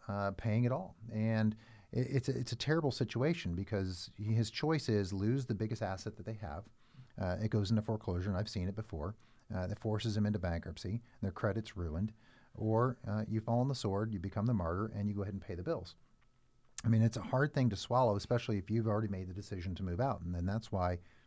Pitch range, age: 100-120 Hz, 40-59